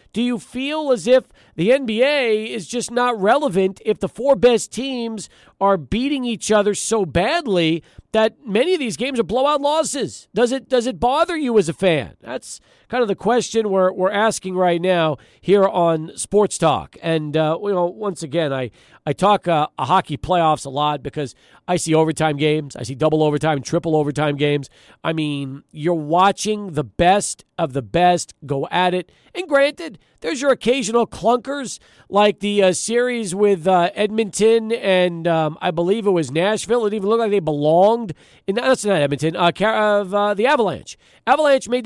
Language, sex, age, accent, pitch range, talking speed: English, male, 40-59, American, 170-245 Hz, 190 wpm